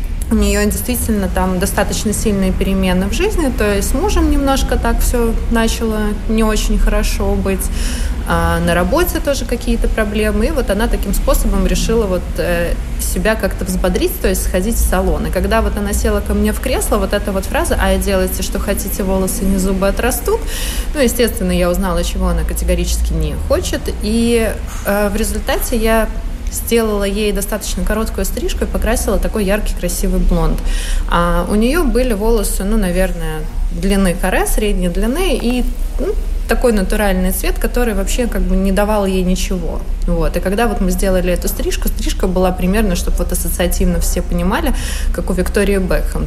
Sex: female